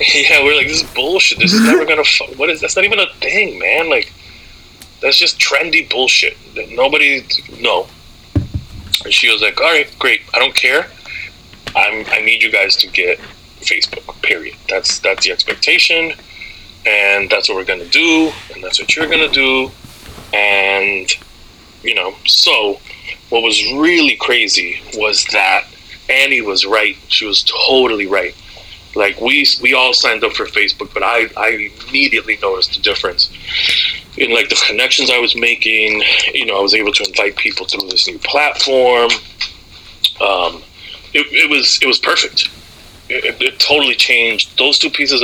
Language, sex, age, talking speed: English, male, 30-49, 170 wpm